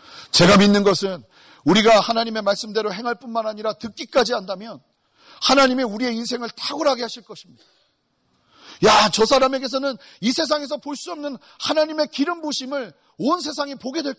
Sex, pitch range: male, 195-280 Hz